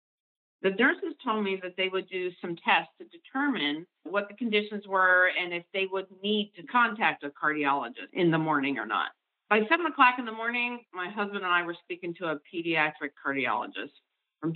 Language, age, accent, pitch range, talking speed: English, 50-69, American, 165-210 Hz, 195 wpm